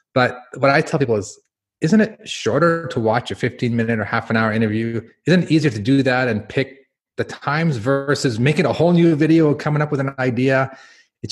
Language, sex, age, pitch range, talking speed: English, male, 30-49, 100-135 Hz, 200 wpm